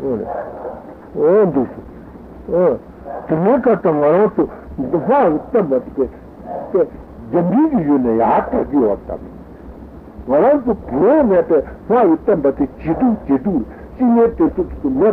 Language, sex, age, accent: Italian, male, 60-79, Indian